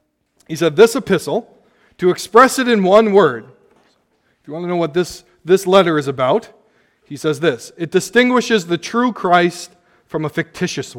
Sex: male